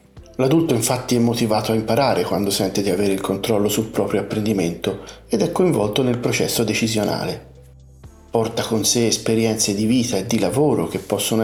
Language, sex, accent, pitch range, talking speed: Italian, male, native, 110-145 Hz, 170 wpm